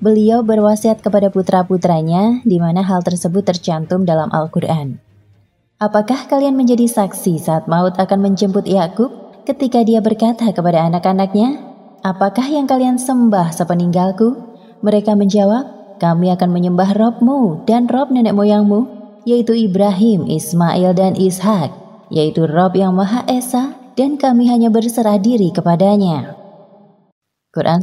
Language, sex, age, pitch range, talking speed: Indonesian, female, 20-39, 175-225 Hz, 125 wpm